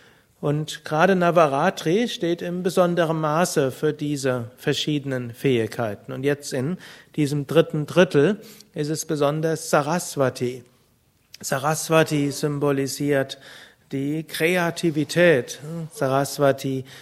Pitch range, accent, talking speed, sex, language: 140-170 Hz, German, 90 wpm, male, German